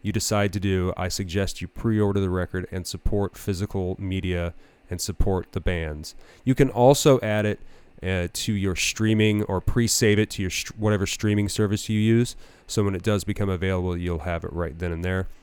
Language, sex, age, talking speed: English, male, 30-49, 190 wpm